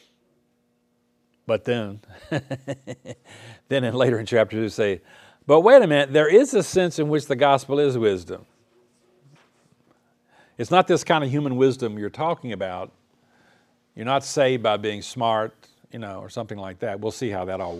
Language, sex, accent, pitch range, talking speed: English, male, American, 100-135 Hz, 170 wpm